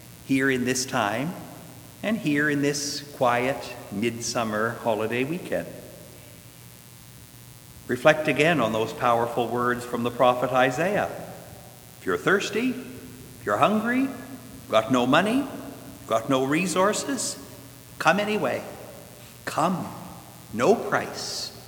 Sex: male